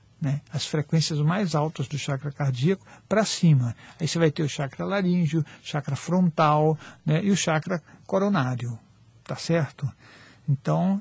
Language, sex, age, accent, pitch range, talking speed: Portuguese, male, 60-79, Brazilian, 145-190 Hz, 145 wpm